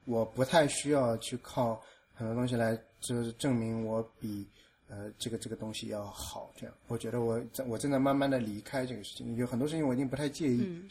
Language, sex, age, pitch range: Chinese, male, 20-39, 110-135 Hz